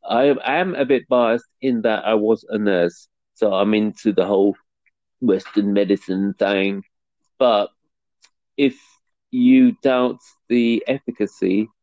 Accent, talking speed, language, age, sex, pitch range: British, 125 wpm, English, 40-59, male, 100-125 Hz